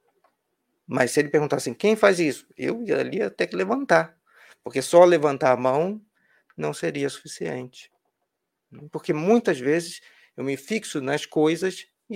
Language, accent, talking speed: Portuguese, Brazilian, 155 wpm